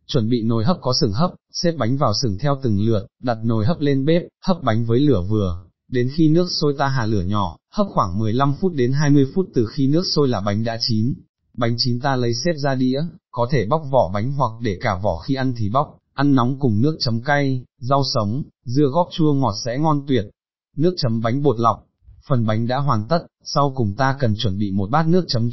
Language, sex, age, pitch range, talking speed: Vietnamese, male, 20-39, 115-145 Hz, 240 wpm